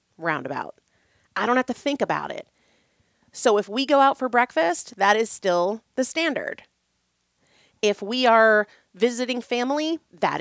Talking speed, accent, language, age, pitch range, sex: 150 wpm, American, English, 30-49, 175-235 Hz, female